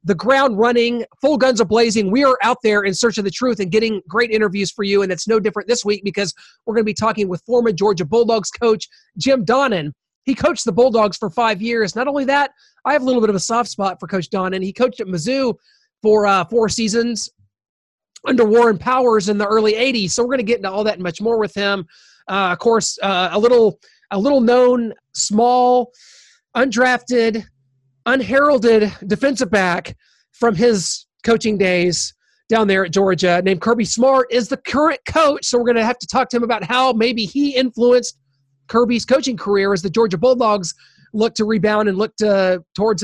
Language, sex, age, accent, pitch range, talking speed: English, male, 30-49, American, 200-245 Hz, 205 wpm